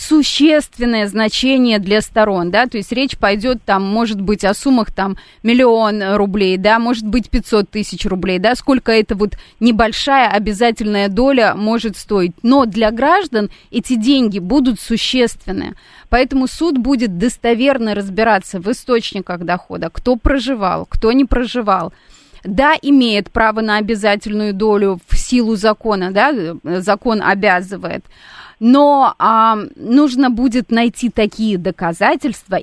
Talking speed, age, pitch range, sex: 130 wpm, 30-49, 205-250 Hz, female